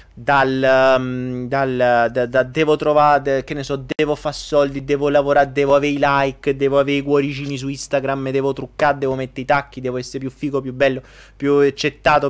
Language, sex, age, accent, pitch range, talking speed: Italian, male, 30-49, native, 130-165 Hz, 195 wpm